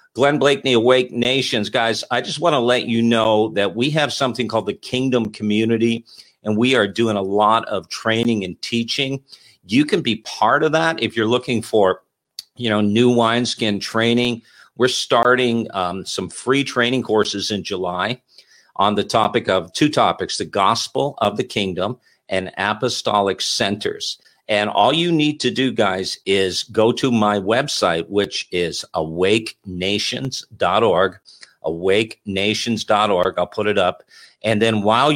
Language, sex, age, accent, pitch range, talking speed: English, male, 50-69, American, 105-130 Hz, 155 wpm